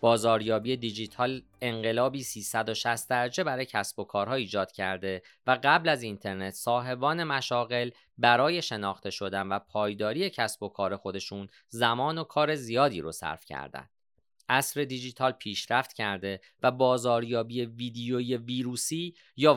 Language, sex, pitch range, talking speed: Persian, male, 105-140 Hz, 130 wpm